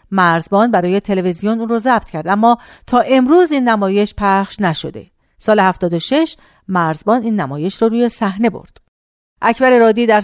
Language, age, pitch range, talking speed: Persian, 50-69, 180-235 Hz, 150 wpm